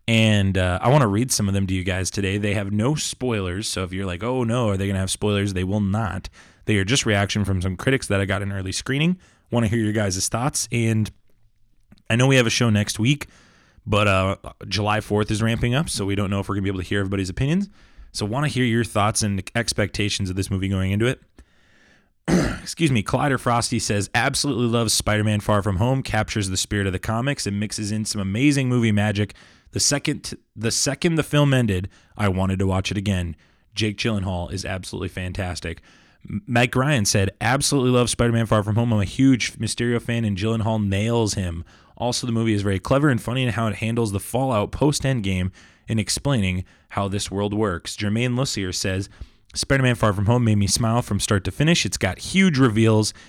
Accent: American